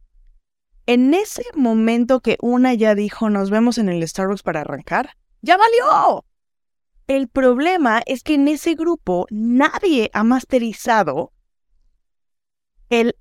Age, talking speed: 20-39, 125 wpm